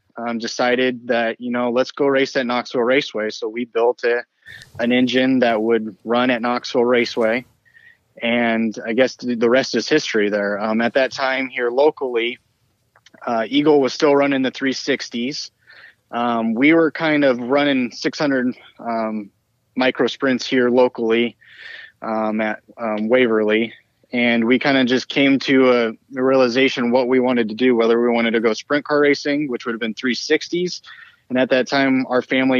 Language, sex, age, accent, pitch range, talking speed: English, male, 20-39, American, 115-130 Hz, 170 wpm